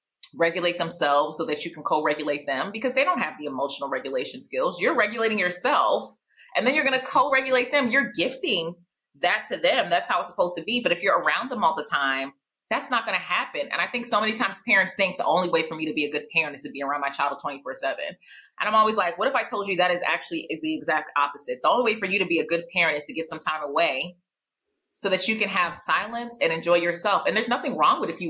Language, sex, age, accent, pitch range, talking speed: English, female, 30-49, American, 165-230 Hz, 260 wpm